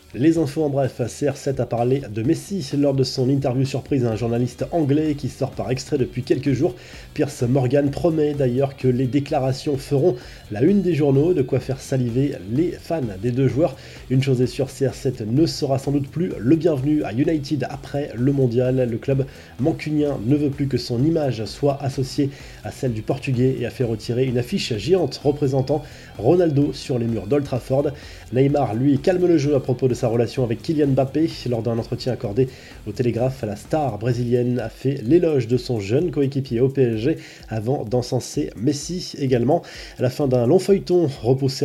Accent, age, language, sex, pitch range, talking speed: French, 20-39, French, male, 125-150 Hz, 190 wpm